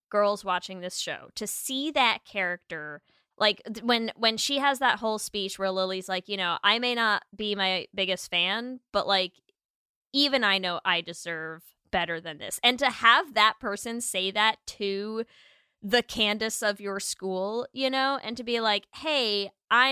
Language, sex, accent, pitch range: English, female, American, 180-235 Hz